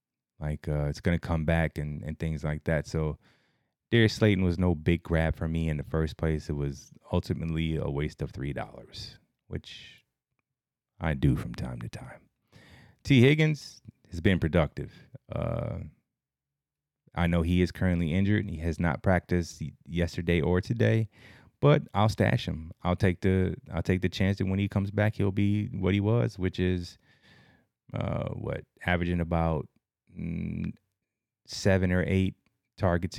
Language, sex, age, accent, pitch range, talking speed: English, male, 30-49, American, 80-100 Hz, 165 wpm